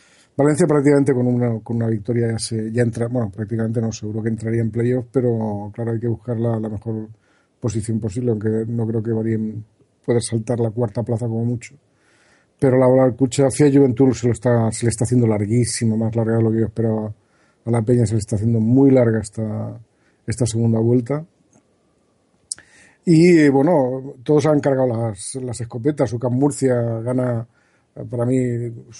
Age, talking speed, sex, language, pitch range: 40-59, 185 wpm, male, Spanish, 115-125 Hz